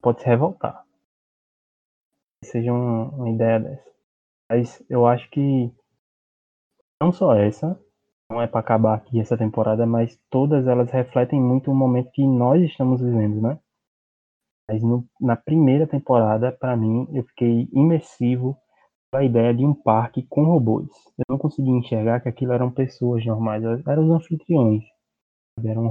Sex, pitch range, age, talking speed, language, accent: male, 115-130 Hz, 20-39, 150 wpm, Portuguese, Brazilian